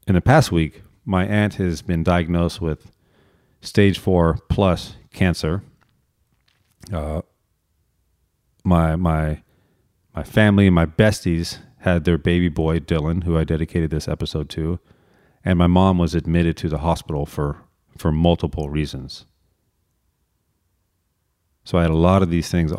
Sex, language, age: male, English, 40-59